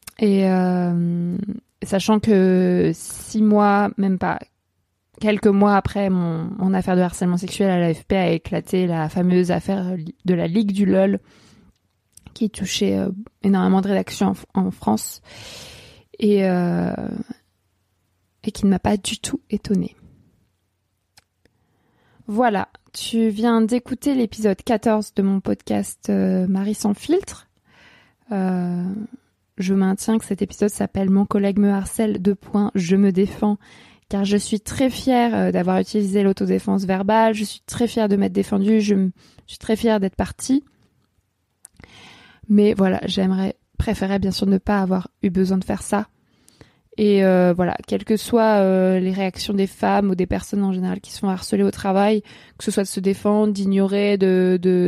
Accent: French